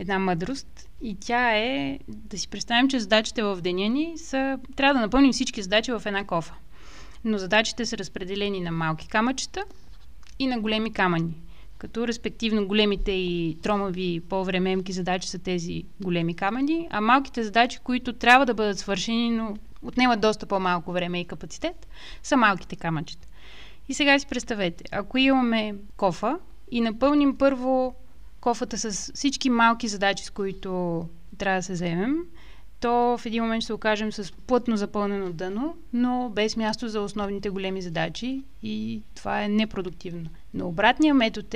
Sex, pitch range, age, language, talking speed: female, 195-250 Hz, 30-49, Bulgarian, 155 wpm